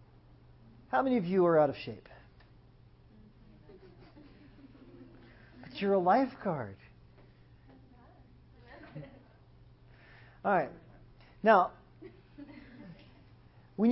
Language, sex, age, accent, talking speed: English, male, 40-59, American, 70 wpm